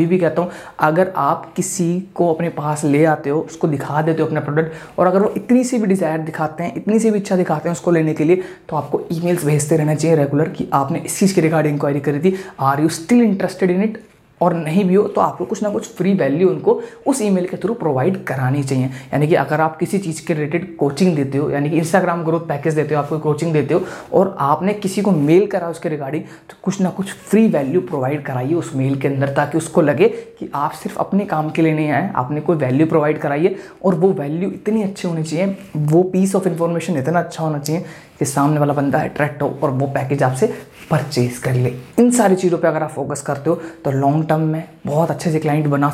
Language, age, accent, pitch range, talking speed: Hindi, 20-39, native, 145-180 Hz, 240 wpm